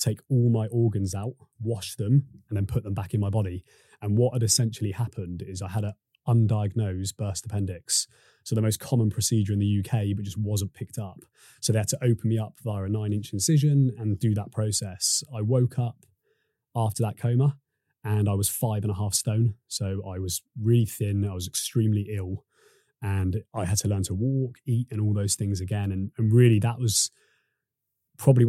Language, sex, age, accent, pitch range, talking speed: English, male, 20-39, British, 100-120 Hz, 205 wpm